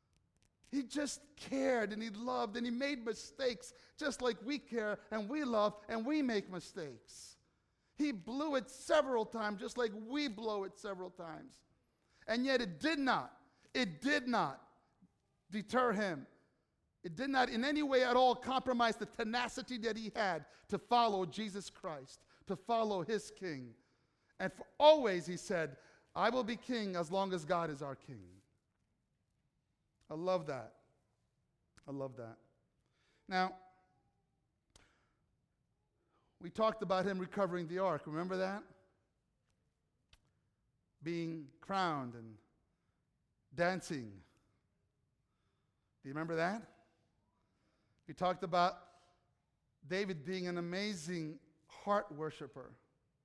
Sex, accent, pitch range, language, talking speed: male, American, 150-230 Hz, English, 130 wpm